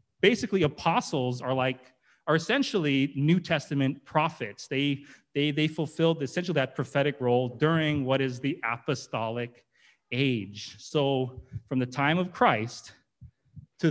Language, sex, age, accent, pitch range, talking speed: English, male, 30-49, American, 125-155 Hz, 130 wpm